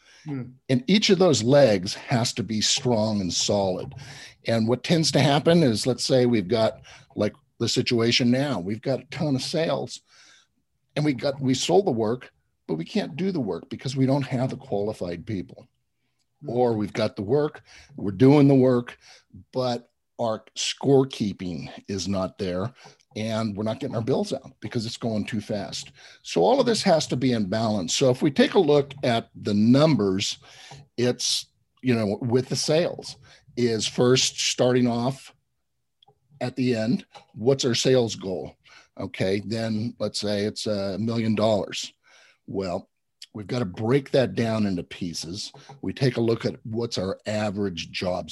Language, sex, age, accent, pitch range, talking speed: English, male, 50-69, American, 110-135 Hz, 175 wpm